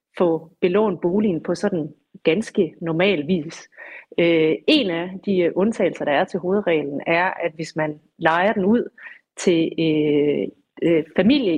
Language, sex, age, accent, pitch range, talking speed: Danish, female, 30-49, native, 165-200 Hz, 130 wpm